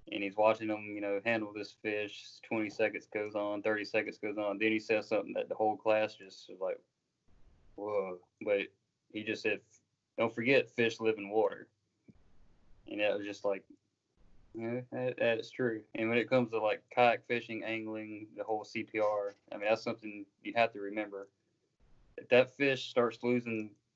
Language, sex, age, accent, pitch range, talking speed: English, male, 20-39, American, 100-115 Hz, 185 wpm